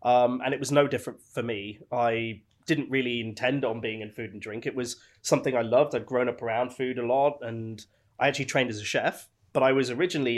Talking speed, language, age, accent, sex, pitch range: 235 wpm, English, 20-39, British, male, 115-135 Hz